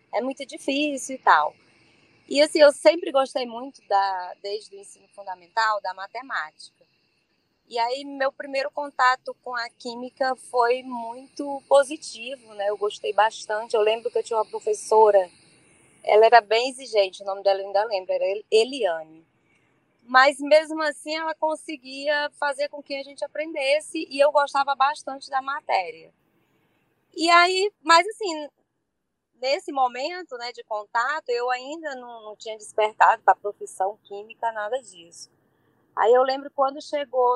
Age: 20-39